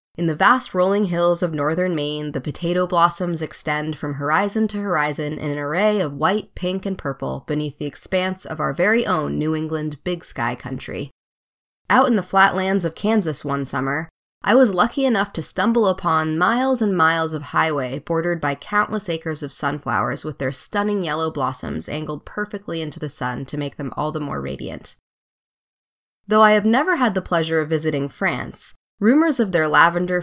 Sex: female